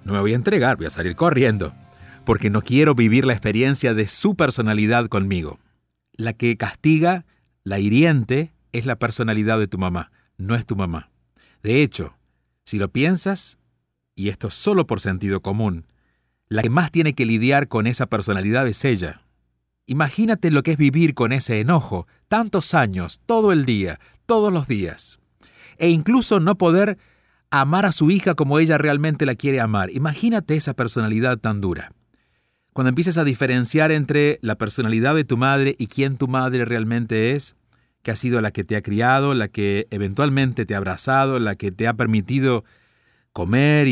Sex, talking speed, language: male, 175 wpm, Spanish